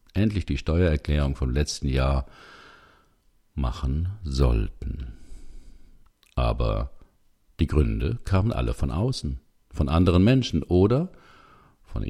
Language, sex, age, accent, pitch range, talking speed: German, male, 60-79, German, 70-95 Hz, 100 wpm